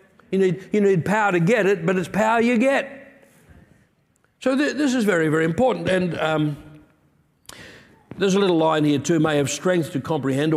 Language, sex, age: English, male, 60-79